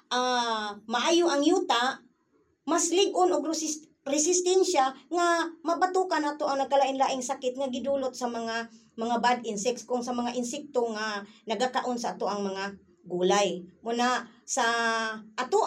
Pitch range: 250-315 Hz